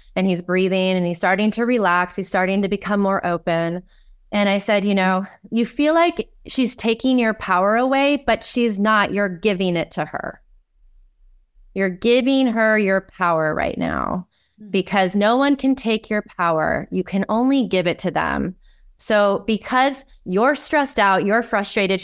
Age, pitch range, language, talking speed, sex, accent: 30-49, 185-230 Hz, English, 170 wpm, female, American